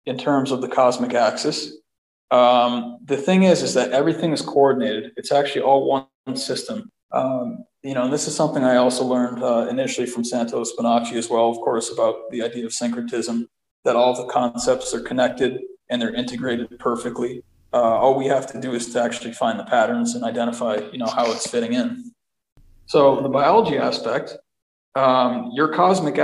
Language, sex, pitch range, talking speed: English, male, 120-140 Hz, 180 wpm